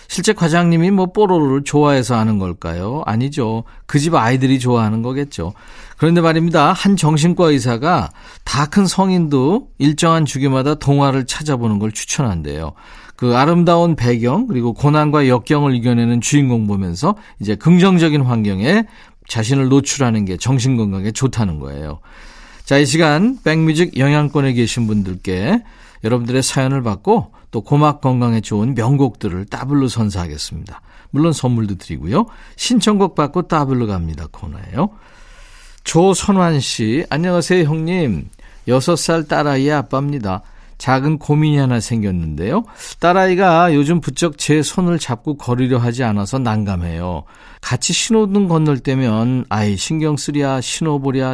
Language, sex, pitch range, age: Korean, male, 115-165 Hz, 40-59